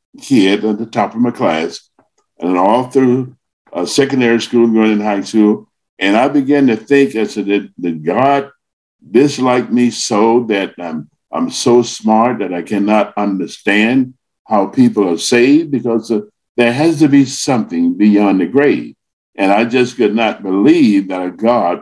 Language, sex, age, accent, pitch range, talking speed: English, male, 60-79, American, 100-135 Hz, 165 wpm